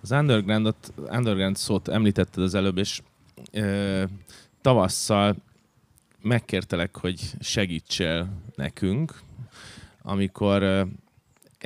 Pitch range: 95-110 Hz